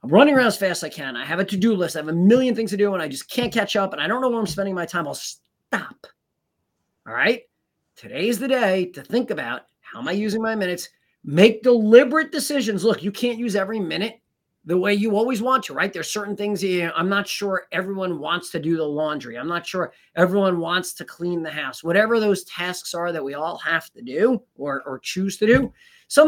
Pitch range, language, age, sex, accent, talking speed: 160-225 Hz, English, 30-49, male, American, 240 wpm